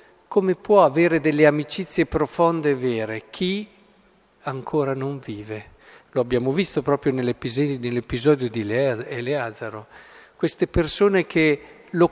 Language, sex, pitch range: Italian, male, 125-165 Hz